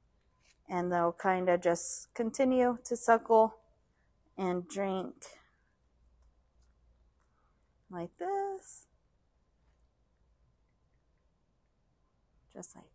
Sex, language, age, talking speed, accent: female, English, 20-39, 65 wpm, American